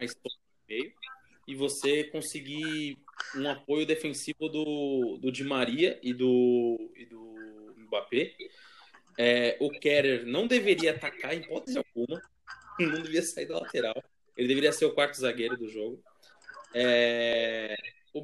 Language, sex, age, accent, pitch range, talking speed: Portuguese, male, 20-39, Brazilian, 125-165 Hz, 135 wpm